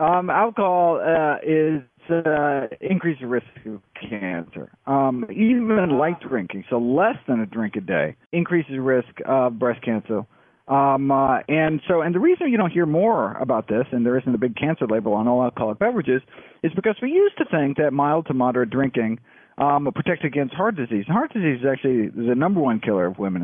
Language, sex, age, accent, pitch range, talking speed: English, male, 50-69, American, 110-155 Hz, 190 wpm